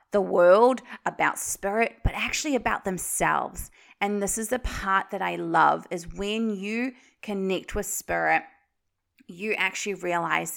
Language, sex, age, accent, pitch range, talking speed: English, female, 30-49, Australian, 190-240 Hz, 140 wpm